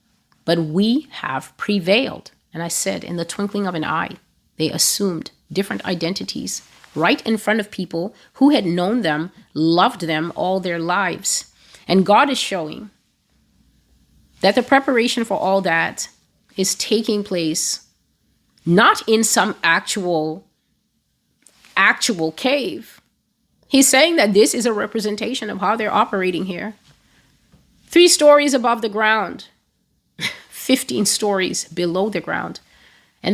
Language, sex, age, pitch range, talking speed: English, female, 30-49, 180-235 Hz, 130 wpm